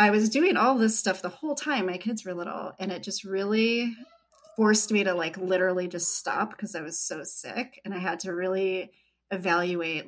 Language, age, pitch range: English, 30-49, 180-220 Hz